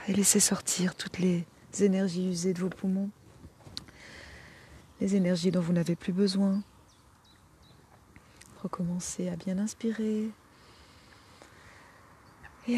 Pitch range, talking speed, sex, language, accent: 170-200 Hz, 105 wpm, female, French, French